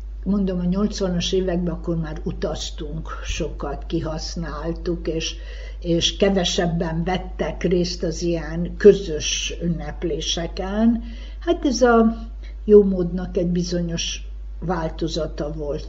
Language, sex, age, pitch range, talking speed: Hungarian, female, 60-79, 165-185 Hz, 100 wpm